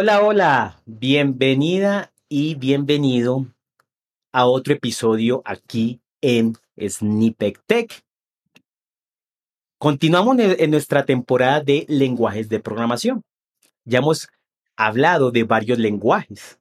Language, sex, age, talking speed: Spanish, male, 40-59, 95 wpm